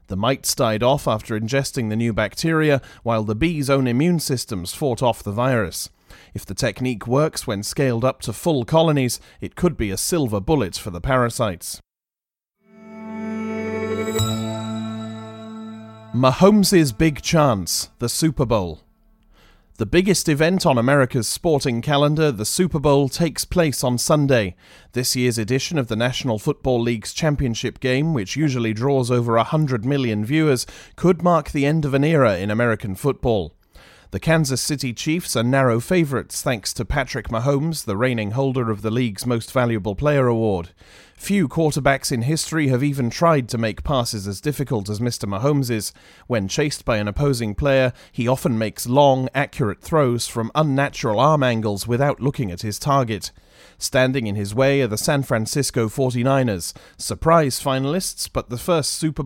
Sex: male